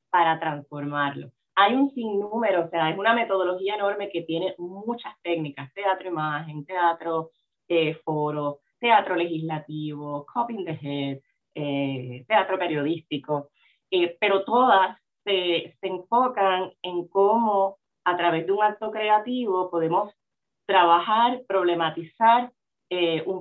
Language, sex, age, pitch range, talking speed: Spanish, female, 30-49, 165-210 Hz, 120 wpm